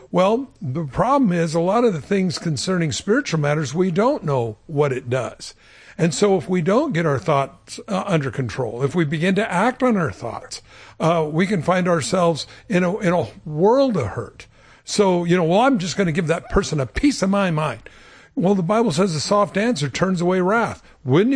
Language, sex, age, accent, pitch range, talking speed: English, male, 60-79, American, 150-215 Hz, 215 wpm